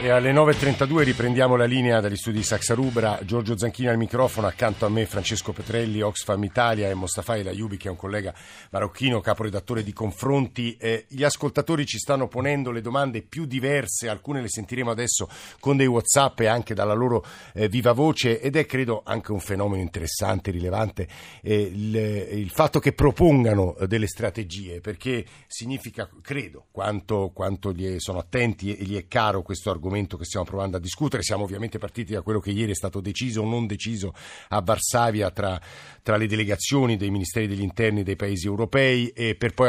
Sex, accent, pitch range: male, native, 100-125 Hz